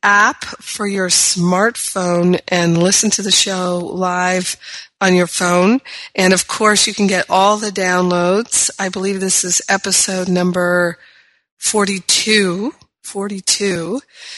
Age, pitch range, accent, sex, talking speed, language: 40-59, 175-195 Hz, American, female, 125 wpm, English